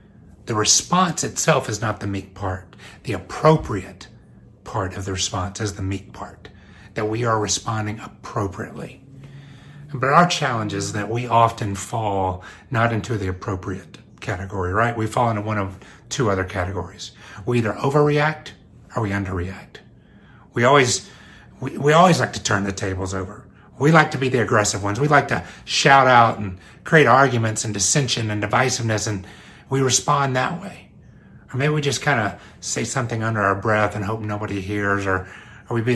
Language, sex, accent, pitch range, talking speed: English, male, American, 100-135 Hz, 170 wpm